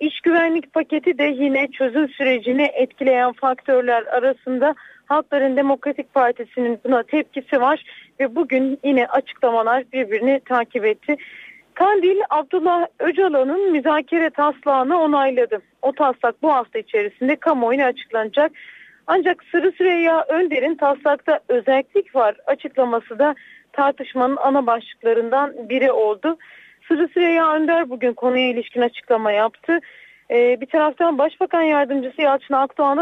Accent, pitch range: native, 250-310 Hz